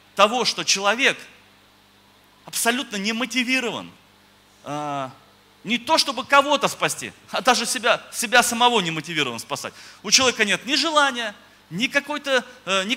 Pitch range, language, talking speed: 170-250 Hz, Russian, 130 wpm